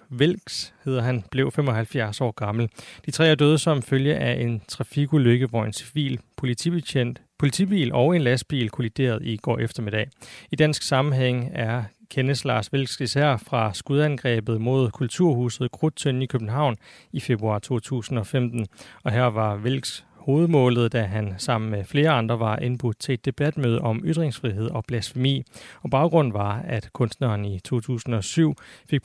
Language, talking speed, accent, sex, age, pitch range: Danish, 155 wpm, native, male, 30-49, 115-145 Hz